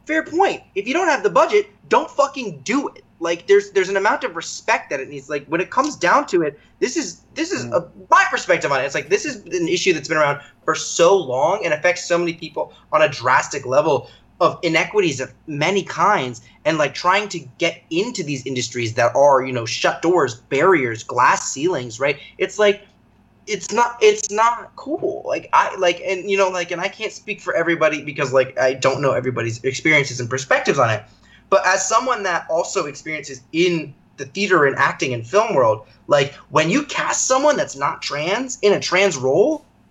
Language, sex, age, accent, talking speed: English, male, 20-39, American, 205 wpm